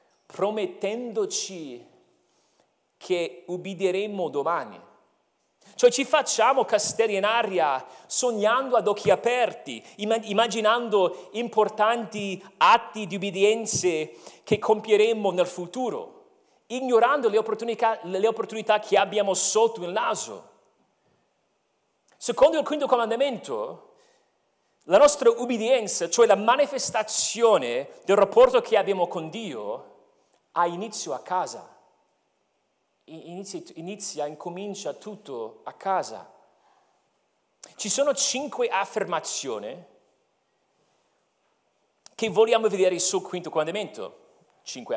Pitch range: 190-255 Hz